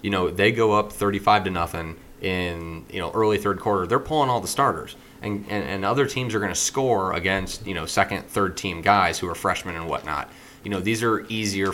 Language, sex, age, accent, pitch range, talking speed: English, male, 30-49, American, 85-105 Hz, 230 wpm